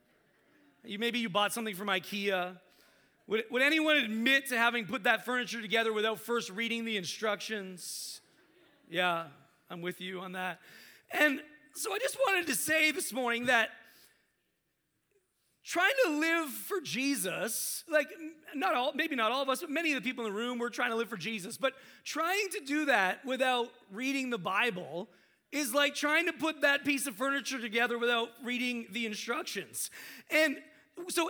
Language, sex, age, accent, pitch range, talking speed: English, male, 30-49, American, 220-290 Hz, 175 wpm